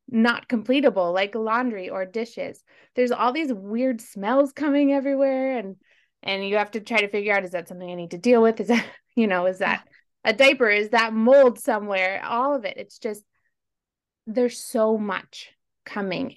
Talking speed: 185 wpm